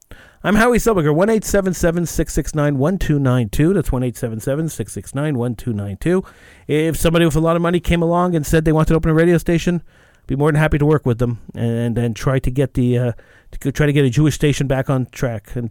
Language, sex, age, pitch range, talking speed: English, male, 40-59, 115-150 Hz, 270 wpm